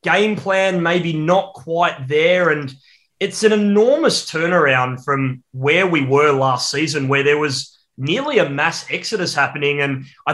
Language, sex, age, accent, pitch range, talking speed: English, male, 20-39, Australian, 140-180 Hz, 155 wpm